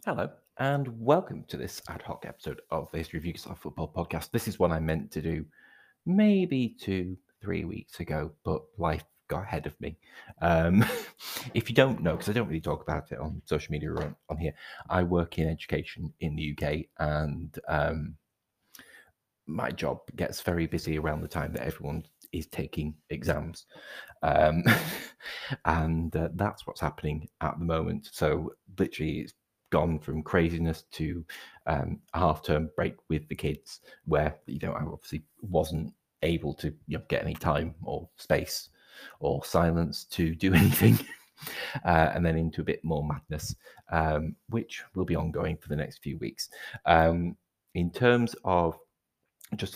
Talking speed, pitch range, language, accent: 170 wpm, 80-90 Hz, English, British